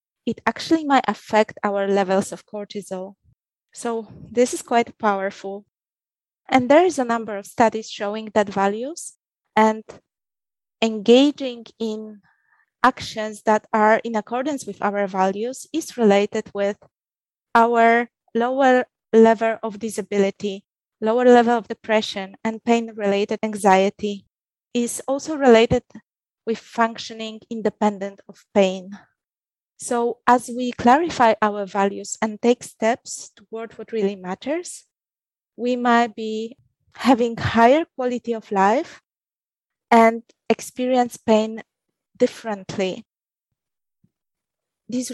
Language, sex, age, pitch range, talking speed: English, female, 20-39, 205-245 Hz, 110 wpm